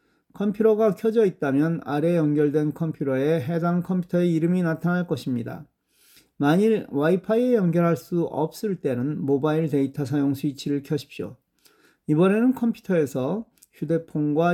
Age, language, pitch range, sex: 40-59, Korean, 145-190 Hz, male